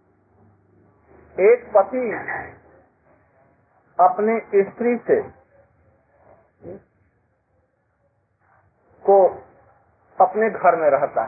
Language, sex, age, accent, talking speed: Hindi, male, 50-69, native, 55 wpm